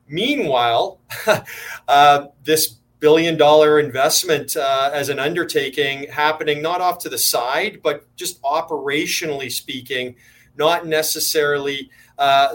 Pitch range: 145-170 Hz